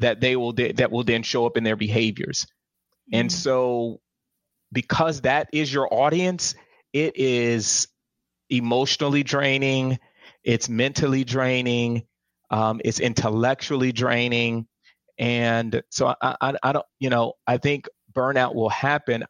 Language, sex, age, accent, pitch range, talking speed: English, male, 30-49, American, 115-125 Hz, 135 wpm